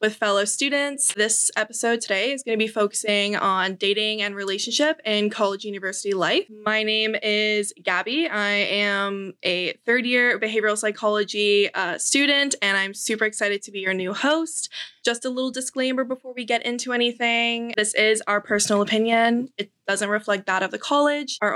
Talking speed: 175 wpm